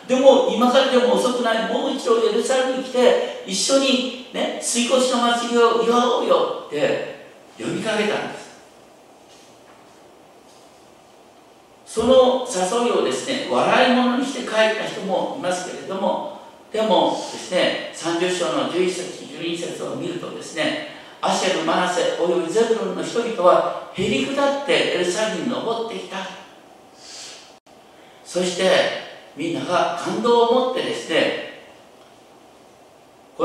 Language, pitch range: Japanese, 190-255 Hz